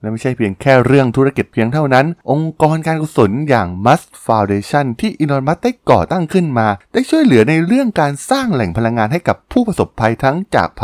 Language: Thai